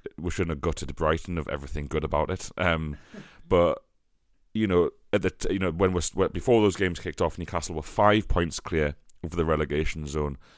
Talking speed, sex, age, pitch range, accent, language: 200 wpm, male, 30-49, 75-90 Hz, British, English